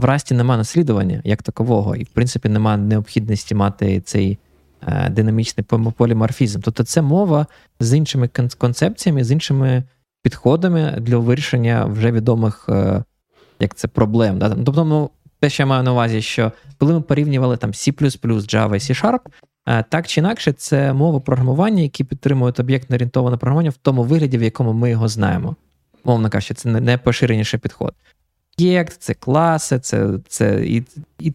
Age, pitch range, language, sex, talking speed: 20-39, 110-140 Hz, Ukrainian, male, 150 wpm